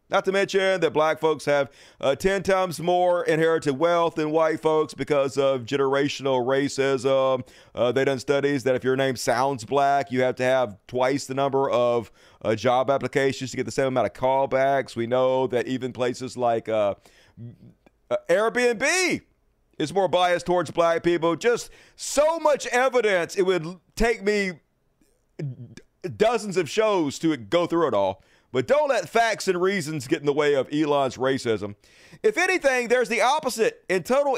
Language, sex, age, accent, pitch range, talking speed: English, male, 40-59, American, 135-205 Hz, 170 wpm